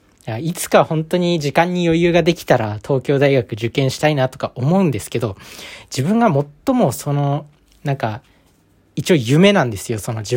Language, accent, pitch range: Japanese, native, 120-165 Hz